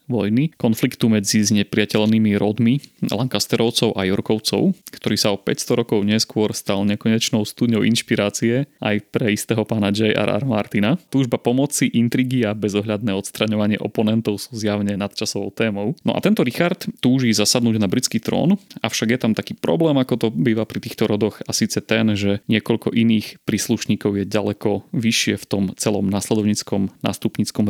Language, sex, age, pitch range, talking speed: Slovak, male, 30-49, 105-120 Hz, 155 wpm